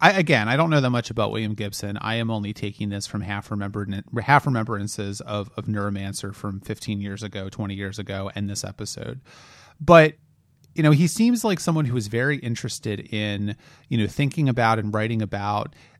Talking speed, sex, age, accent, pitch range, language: 195 wpm, male, 30-49, American, 105-140 Hz, English